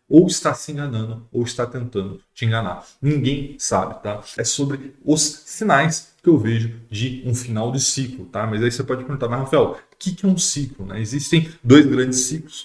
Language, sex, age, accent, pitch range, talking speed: Portuguese, male, 20-39, Brazilian, 115-145 Hz, 200 wpm